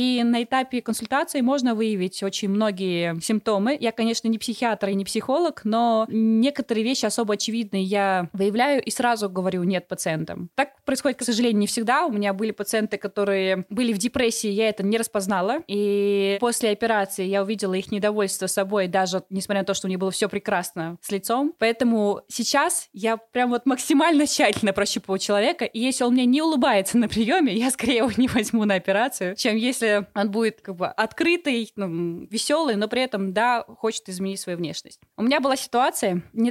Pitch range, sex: 200-250 Hz, female